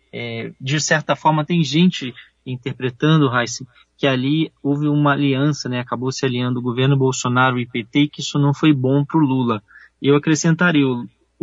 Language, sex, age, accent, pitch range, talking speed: Portuguese, male, 20-39, Brazilian, 125-155 Hz, 190 wpm